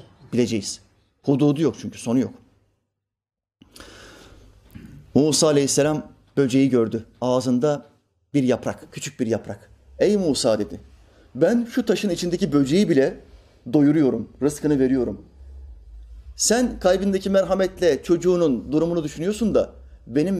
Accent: native